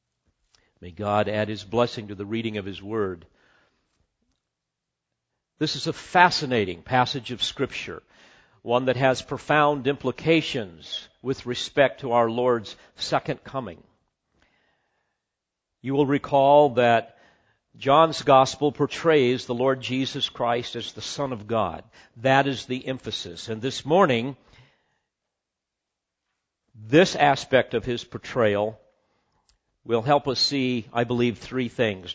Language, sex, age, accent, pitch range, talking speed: English, male, 50-69, American, 110-135 Hz, 125 wpm